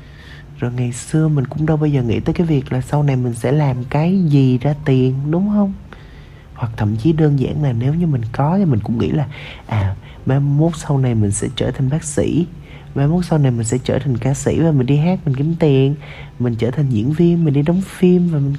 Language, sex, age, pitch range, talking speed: Vietnamese, male, 20-39, 125-150 Hz, 245 wpm